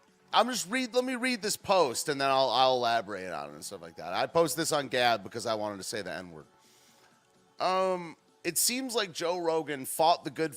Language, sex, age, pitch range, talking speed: English, male, 30-49, 125-180 Hz, 225 wpm